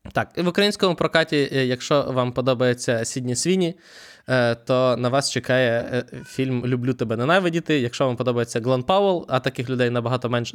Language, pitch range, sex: Ukrainian, 120-145 Hz, male